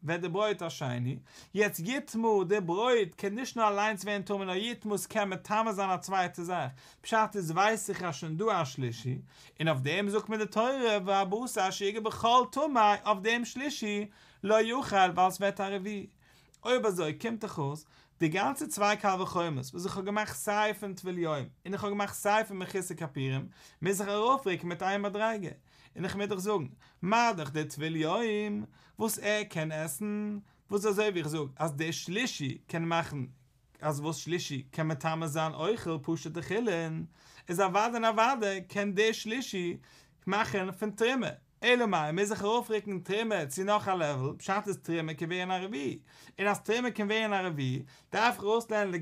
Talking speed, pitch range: 95 wpm, 165-215 Hz